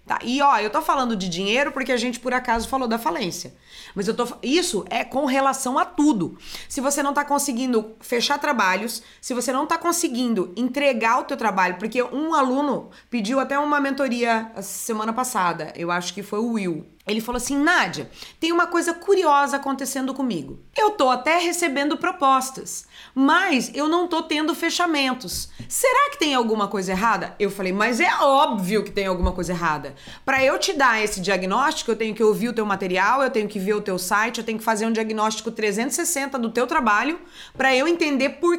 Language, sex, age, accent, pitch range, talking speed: Portuguese, female, 20-39, Brazilian, 215-285 Hz, 195 wpm